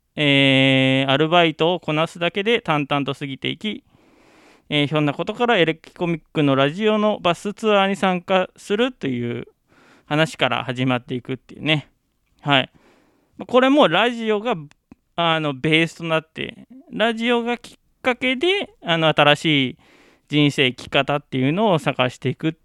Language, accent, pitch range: Japanese, native, 130-175 Hz